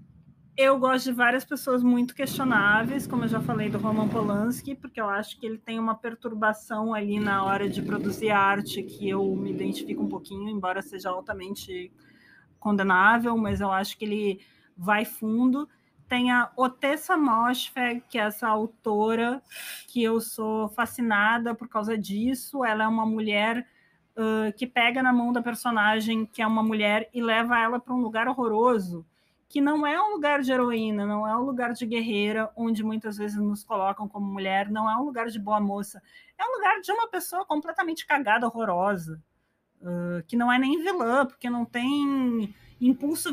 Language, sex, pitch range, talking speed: Portuguese, female, 215-265 Hz, 175 wpm